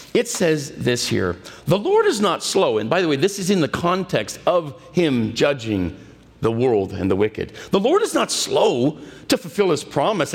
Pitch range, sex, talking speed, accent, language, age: 150-225 Hz, male, 205 wpm, American, English, 50-69